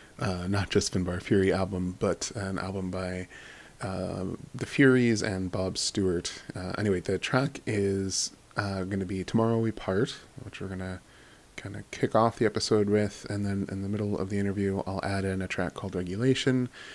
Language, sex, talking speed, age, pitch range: English, male, 190 wpm, 20-39, 95-110 Hz